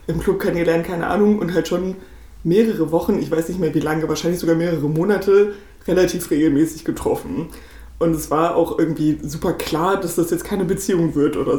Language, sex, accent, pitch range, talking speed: German, female, German, 170-225 Hz, 195 wpm